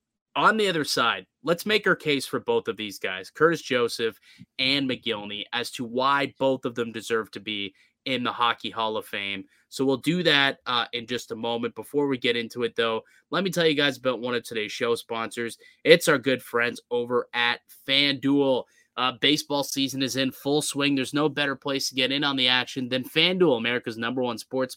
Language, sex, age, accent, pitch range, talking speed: English, male, 20-39, American, 125-155 Hz, 215 wpm